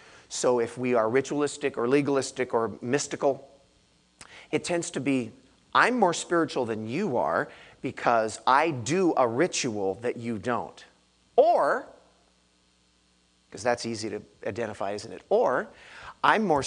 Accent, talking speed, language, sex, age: American, 135 wpm, English, male, 50-69